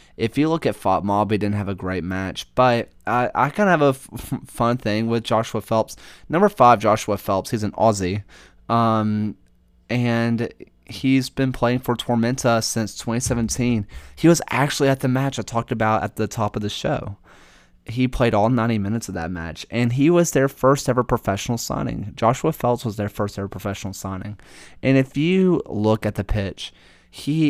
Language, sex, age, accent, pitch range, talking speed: English, male, 20-39, American, 100-130 Hz, 185 wpm